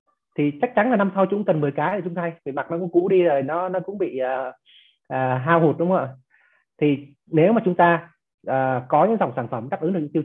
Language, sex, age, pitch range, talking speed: Vietnamese, male, 20-39, 130-175 Hz, 280 wpm